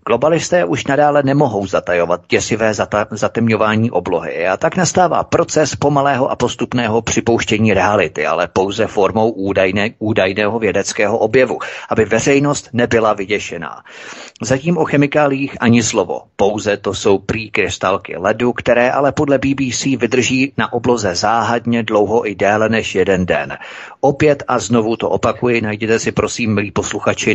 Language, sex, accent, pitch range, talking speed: Czech, male, native, 110-130 Hz, 140 wpm